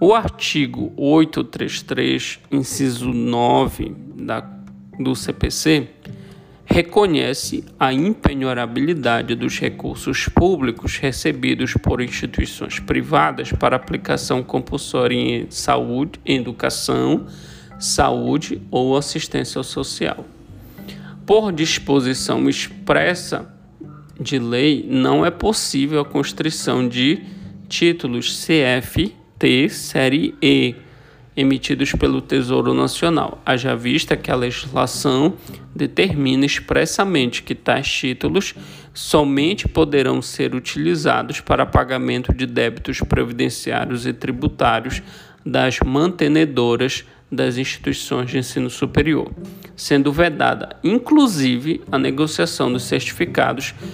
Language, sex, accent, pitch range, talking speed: Portuguese, male, Brazilian, 120-155 Hz, 90 wpm